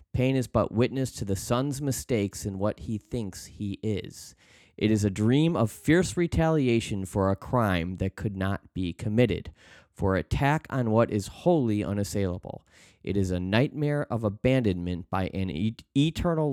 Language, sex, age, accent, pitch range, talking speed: English, male, 30-49, American, 95-125 Hz, 165 wpm